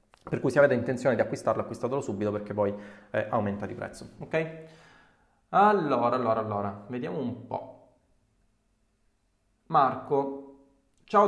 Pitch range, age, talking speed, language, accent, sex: 115-165 Hz, 20-39, 130 wpm, Italian, native, male